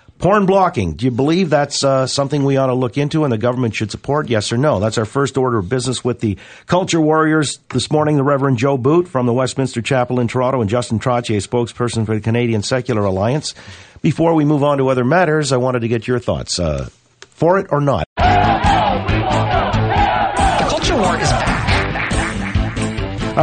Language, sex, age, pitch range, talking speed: English, male, 50-69, 110-135 Hz, 185 wpm